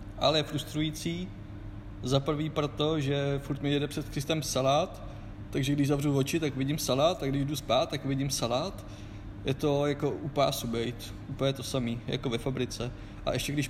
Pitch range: 105-140 Hz